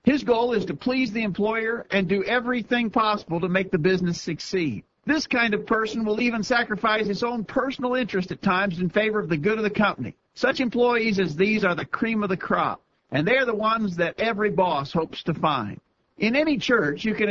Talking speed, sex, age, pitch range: 215 wpm, male, 50-69, 185-235 Hz